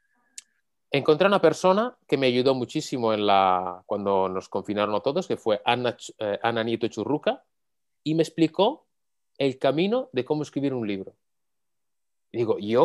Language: Spanish